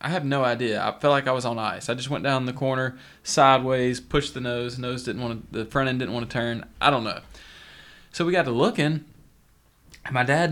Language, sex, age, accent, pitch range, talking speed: English, male, 20-39, American, 110-130 Hz, 250 wpm